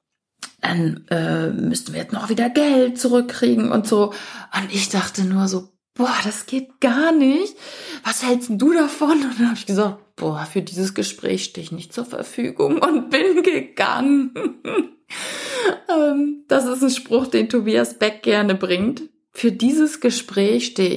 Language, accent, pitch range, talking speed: German, German, 195-250 Hz, 160 wpm